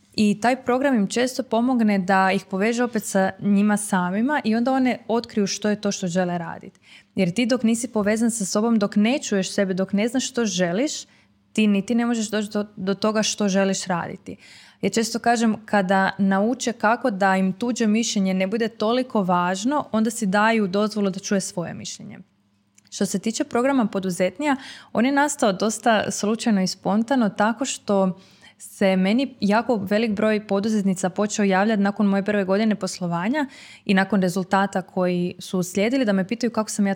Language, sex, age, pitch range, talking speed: Croatian, female, 20-39, 195-235 Hz, 180 wpm